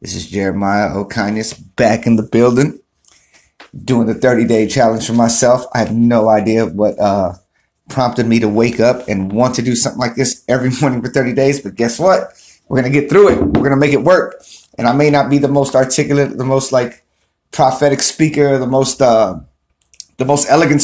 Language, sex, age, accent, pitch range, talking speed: English, male, 30-49, American, 100-135 Hz, 205 wpm